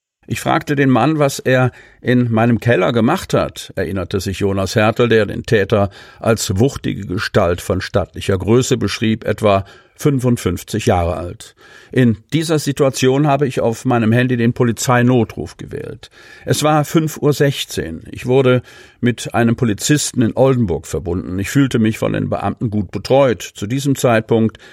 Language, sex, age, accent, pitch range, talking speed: German, male, 50-69, German, 105-130 Hz, 155 wpm